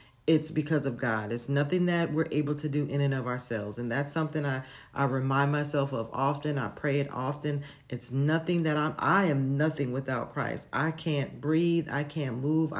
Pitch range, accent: 130-155 Hz, American